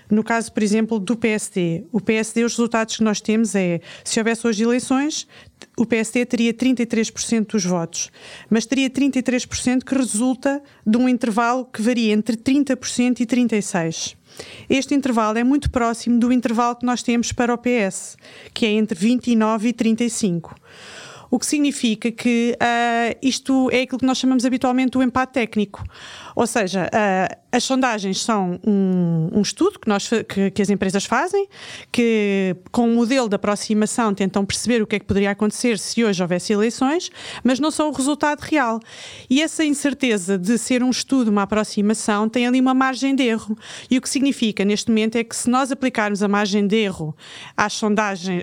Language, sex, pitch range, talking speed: Portuguese, female, 210-250 Hz, 180 wpm